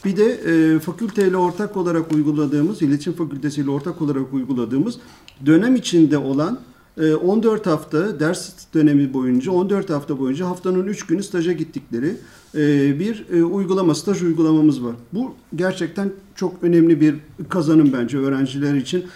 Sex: male